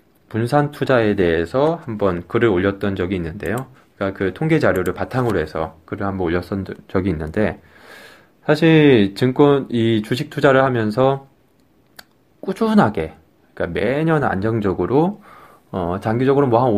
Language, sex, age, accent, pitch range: Korean, male, 20-39, native, 100-145 Hz